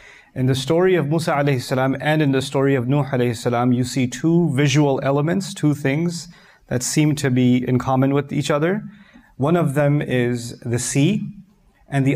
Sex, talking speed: male, 180 wpm